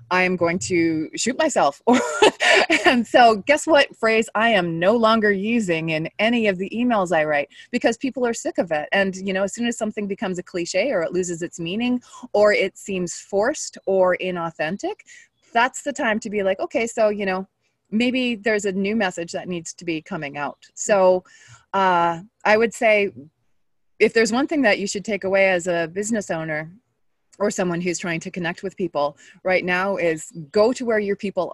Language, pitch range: English, 170-225 Hz